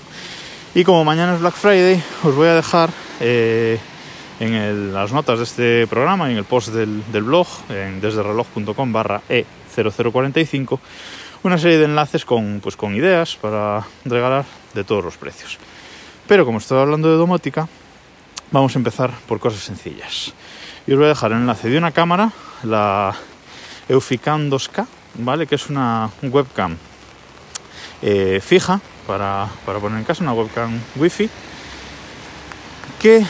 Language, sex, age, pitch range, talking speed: Spanish, male, 20-39, 110-165 Hz, 145 wpm